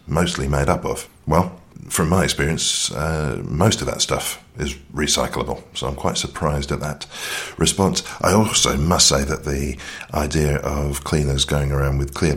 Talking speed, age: 170 wpm, 40-59